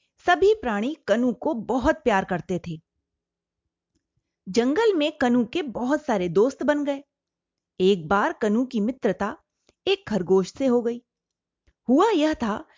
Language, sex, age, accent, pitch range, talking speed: Hindi, female, 30-49, native, 200-295 Hz, 140 wpm